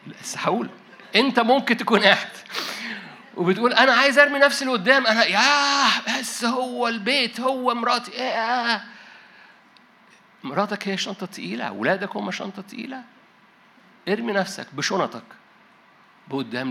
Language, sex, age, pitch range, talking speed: Arabic, male, 60-79, 195-245 Hz, 115 wpm